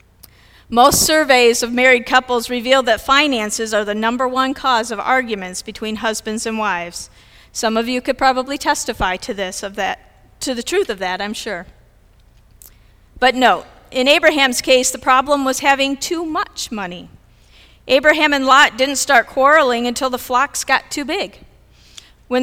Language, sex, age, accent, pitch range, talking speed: English, female, 40-59, American, 205-265 Hz, 155 wpm